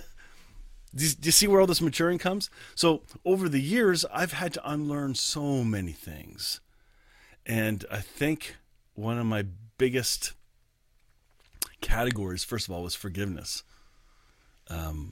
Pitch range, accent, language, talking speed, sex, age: 100-140 Hz, American, English, 130 wpm, male, 40-59